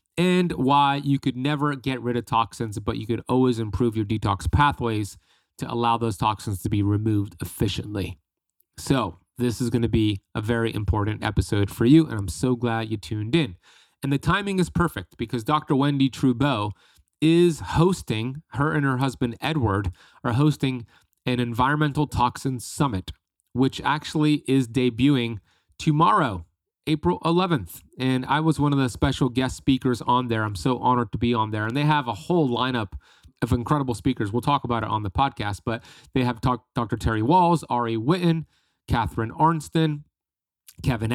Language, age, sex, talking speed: English, 30-49, male, 175 wpm